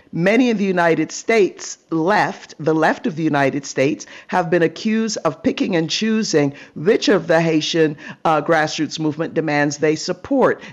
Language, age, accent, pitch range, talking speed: English, 50-69, American, 155-190 Hz, 160 wpm